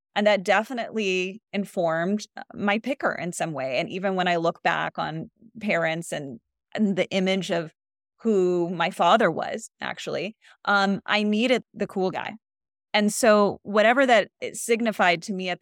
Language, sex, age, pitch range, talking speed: English, female, 30-49, 185-245 Hz, 160 wpm